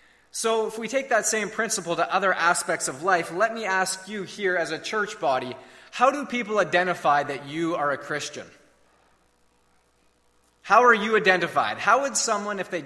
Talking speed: 180 wpm